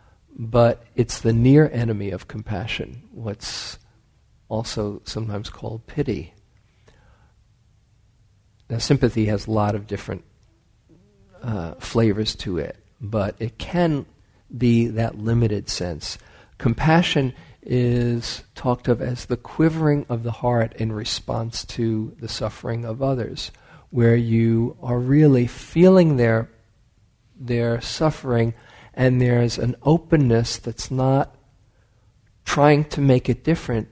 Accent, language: American, English